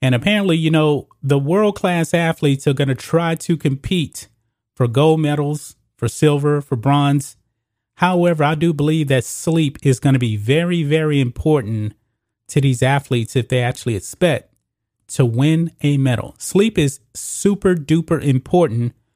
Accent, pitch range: American, 120-160 Hz